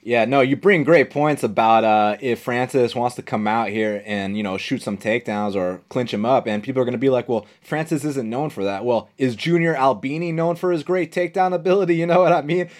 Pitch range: 120-165 Hz